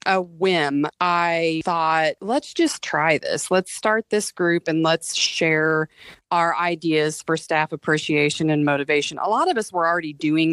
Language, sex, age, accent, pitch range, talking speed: English, female, 30-49, American, 155-195 Hz, 165 wpm